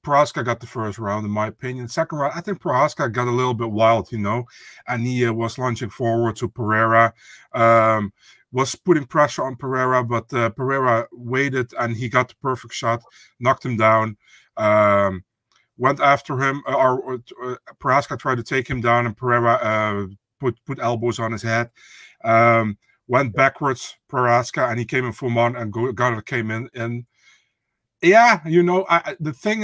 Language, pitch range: English, 115-140 Hz